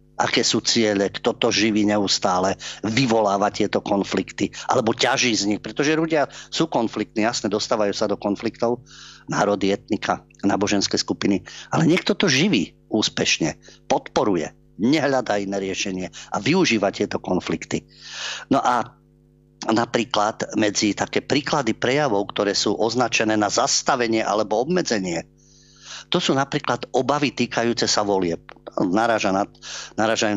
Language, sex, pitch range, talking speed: Slovak, male, 100-130 Hz, 125 wpm